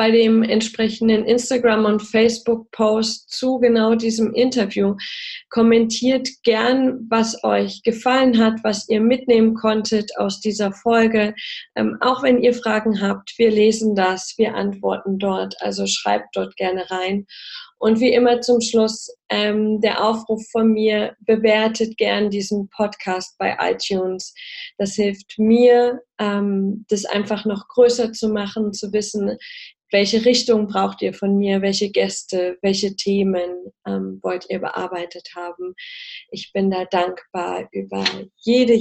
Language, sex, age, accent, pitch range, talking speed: German, female, 20-39, German, 195-235 Hz, 140 wpm